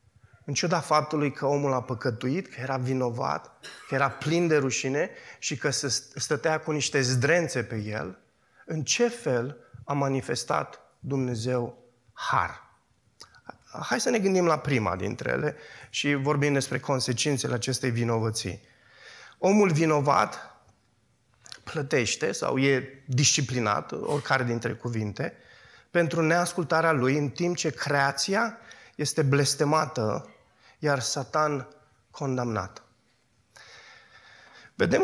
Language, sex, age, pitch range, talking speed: Romanian, male, 20-39, 120-160 Hz, 115 wpm